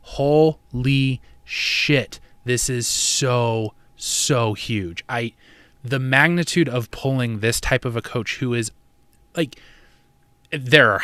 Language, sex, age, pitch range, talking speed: English, male, 20-39, 110-130 Hz, 120 wpm